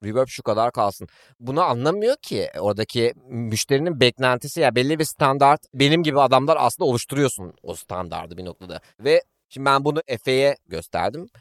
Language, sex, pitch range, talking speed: Turkish, male, 125-165 Hz, 160 wpm